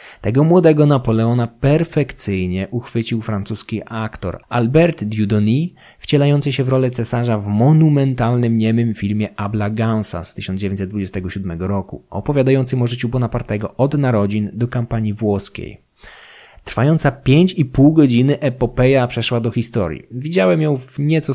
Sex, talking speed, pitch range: male, 125 wpm, 100-130 Hz